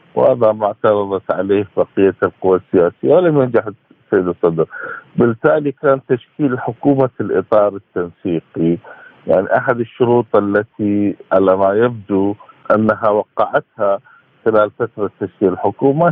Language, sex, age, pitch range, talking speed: Arabic, male, 50-69, 100-130 Hz, 110 wpm